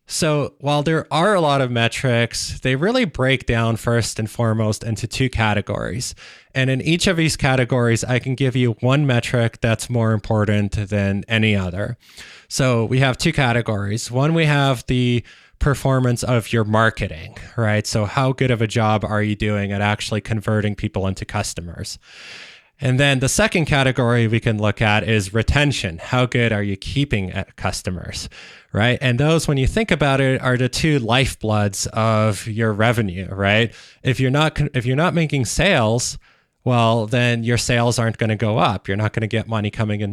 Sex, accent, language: male, American, English